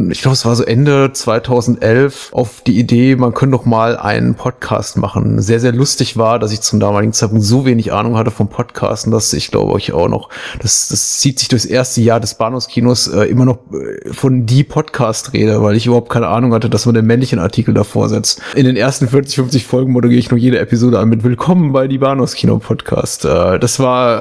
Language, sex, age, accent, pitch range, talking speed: German, male, 30-49, German, 120-140 Hz, 215 wpm